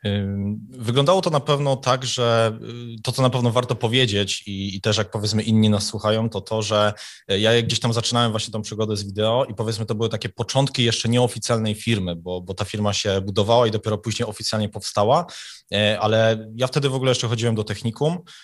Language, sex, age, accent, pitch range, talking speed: Polish, male, 20-39, native, 105-120 Hz, 200 wpm